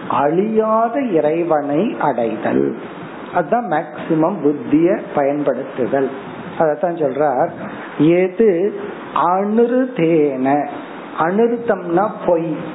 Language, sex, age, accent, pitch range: Tamil, male, 50-69, native, 155-210 Hz